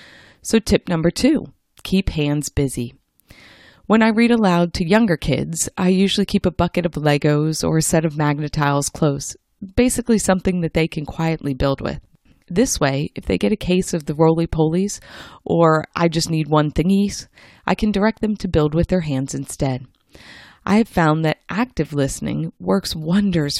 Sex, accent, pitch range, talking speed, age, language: female, American, 145-190 Hz, 180 wpm, 30-49, English